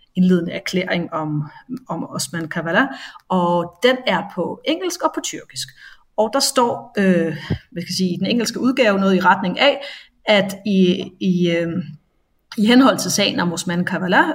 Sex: female